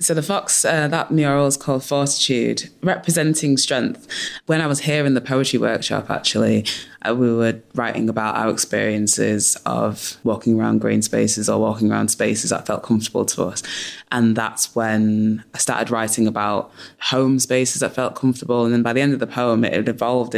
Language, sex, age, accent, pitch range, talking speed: English, female, 20-39, British, 110-130 Hz, 190 wpm